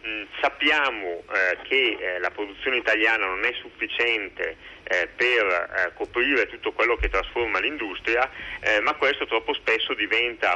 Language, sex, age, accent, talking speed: Italian, male, 40-59, native, 140 wpm